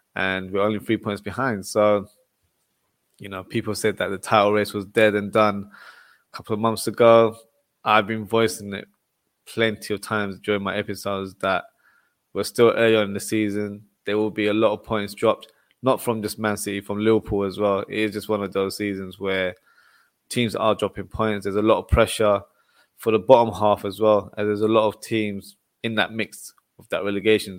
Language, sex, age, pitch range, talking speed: English, male, 20-39, 100-110 Hz, 205 wpm